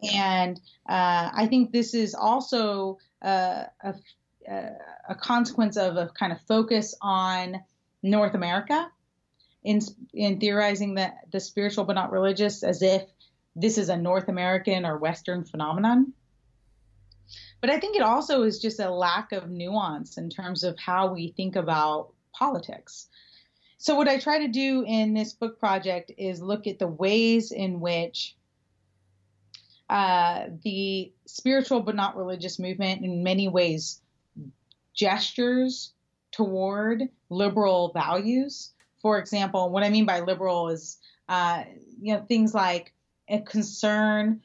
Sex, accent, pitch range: female, American, 180-220 Hz